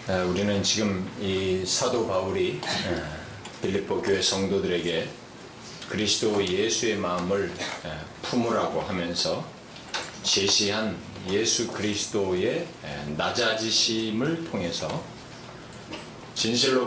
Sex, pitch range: male, 95-120 Hz